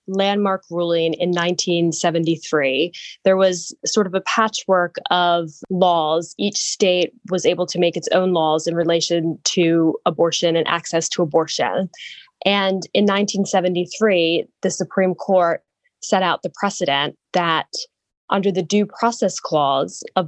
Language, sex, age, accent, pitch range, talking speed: English, female, 10-29, American, 170-205 Hz, 135 wpm